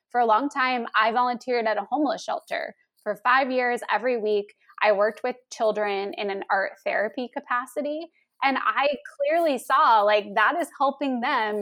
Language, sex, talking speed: English, female, 170 wpm